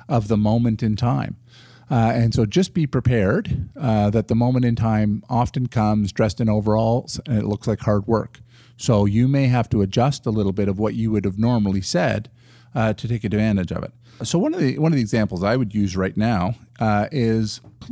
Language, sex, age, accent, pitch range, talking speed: English, male, 50-69, American, 105-125 Hz, 220 wpm